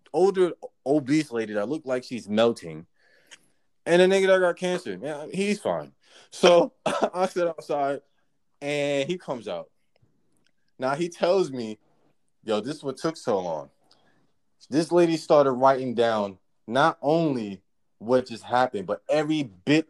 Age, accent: 20-39, American